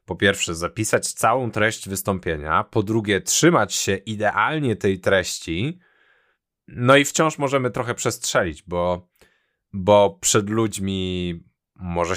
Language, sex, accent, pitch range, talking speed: Polish, male, native, 90-130 Hz, 120 wpm